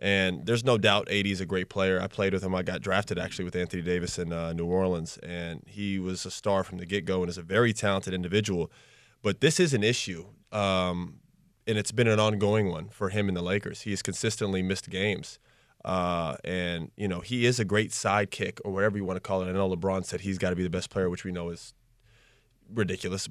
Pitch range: 95-115 Hz